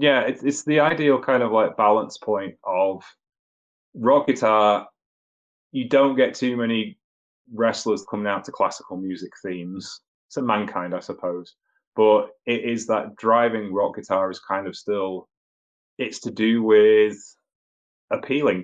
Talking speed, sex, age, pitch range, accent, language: 150 wpm, male, 20-39, 90-115 Hz, British, English